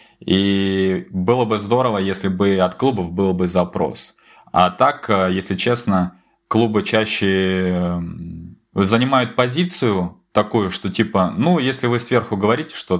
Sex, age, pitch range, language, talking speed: male, 20-39, 90-125 Hz, Russian, 130 wpm